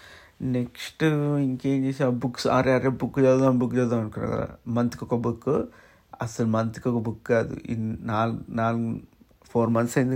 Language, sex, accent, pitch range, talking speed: Telugu, male, native, 115-130 Hz, 150 wpm